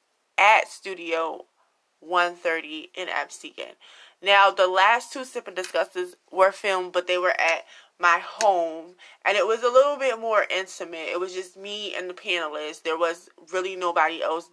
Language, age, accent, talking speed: English, 20-39, American, 165 wpm